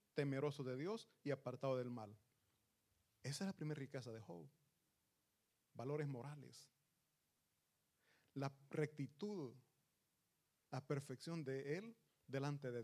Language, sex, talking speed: Italian, male, 110 wpm